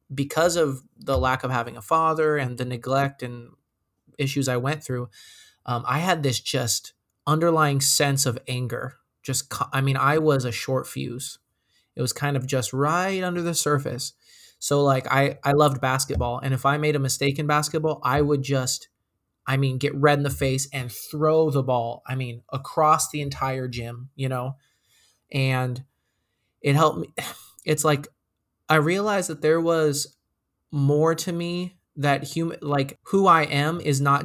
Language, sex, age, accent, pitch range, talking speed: English, male, 20-39, American, 125-150 Hz, 175 wpm